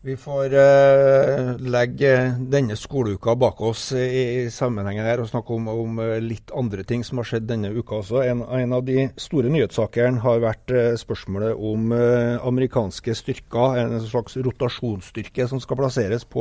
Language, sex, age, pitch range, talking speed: English, male, 50-69, 115-135 Hz, 155 wpm